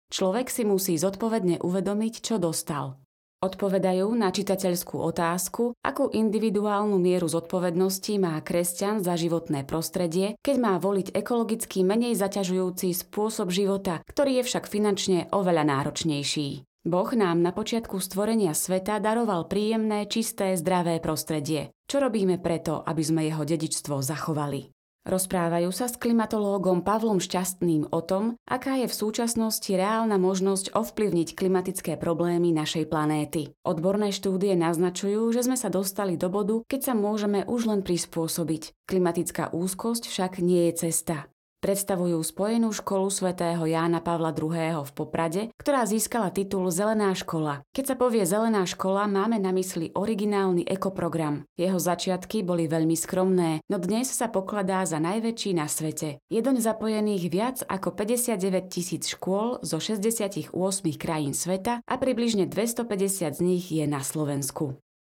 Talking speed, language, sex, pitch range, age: 135 wpm, Slovak, female, 170-210 Hz, 30-49